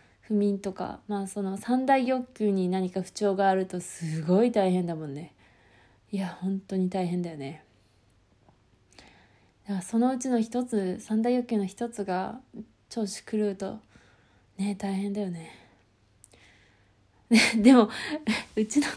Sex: female